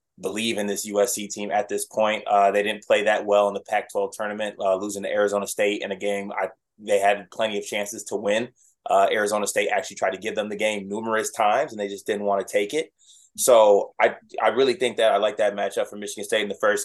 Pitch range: 100-115 Hz